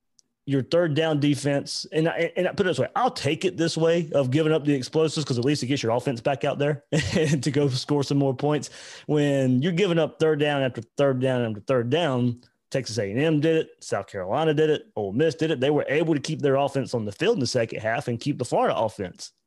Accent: American